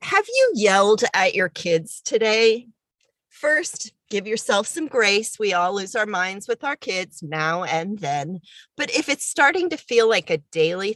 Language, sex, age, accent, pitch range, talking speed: English, female, 40-59, American, 170-220 Hz, 175 wpm